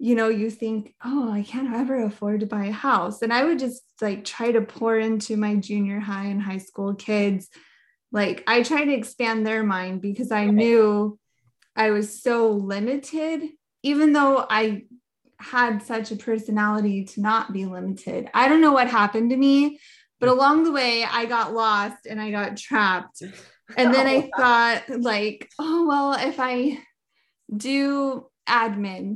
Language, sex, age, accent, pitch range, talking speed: English, female, 20-39, American, 210-260 Hz, 170 wpm